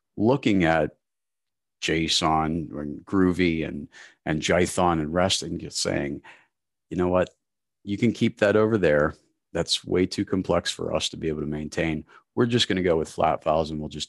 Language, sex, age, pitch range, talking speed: English, male, 40-59, 75-100 Hz, 185 wpm